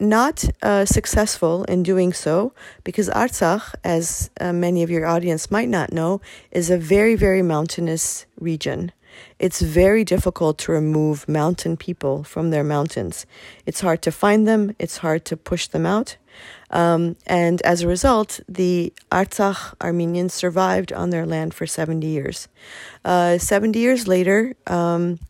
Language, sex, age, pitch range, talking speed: English, female, 40-59, 165-195 Hz, 150 wpm